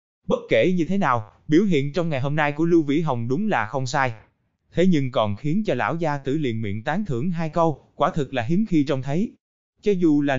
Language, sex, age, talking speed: Vietnamese, male, 20-39, 250 wpm